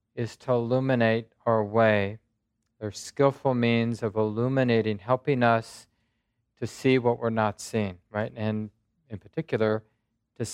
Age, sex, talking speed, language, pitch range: 40-59, male, 130 wpm, English, 110-125 Hz